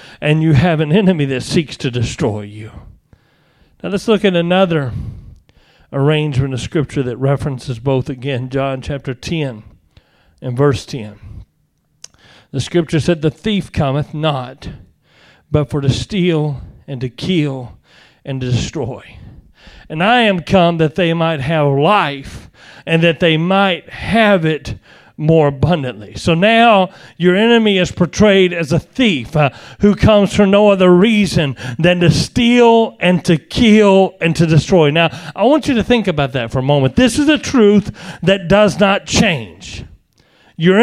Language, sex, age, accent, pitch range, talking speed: English, male, 40-59, American, 135-205 Hz, 155 wpm